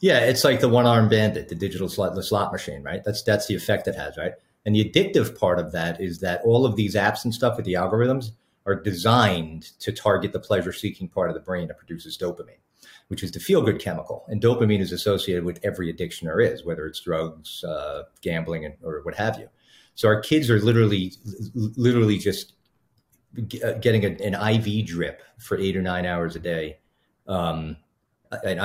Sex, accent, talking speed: male, American, 200 wpm